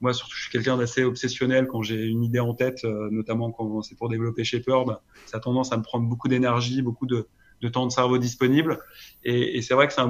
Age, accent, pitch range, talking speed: 20-39, French, 115-130 Hz, 245 wpm